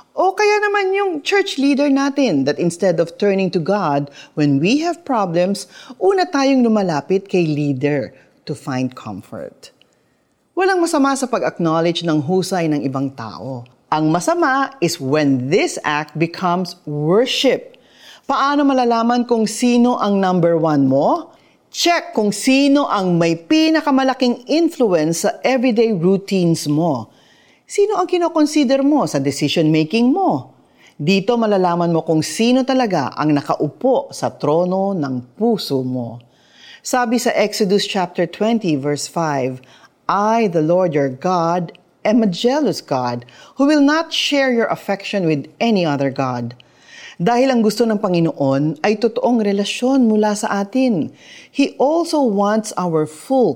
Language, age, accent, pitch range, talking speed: Filipino, 40-59, native, 155-260 Hz, 140 wpm